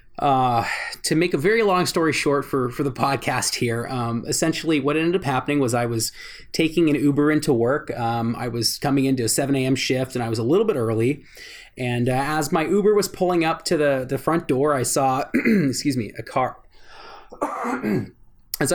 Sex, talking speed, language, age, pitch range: male, 200 wpm, English, 20-39, 125-160 Hz